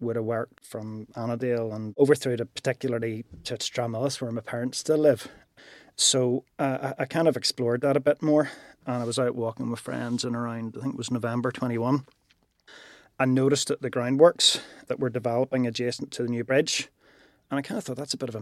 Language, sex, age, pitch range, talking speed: English, male, 30-49, 115-135 Hz, 210 wpm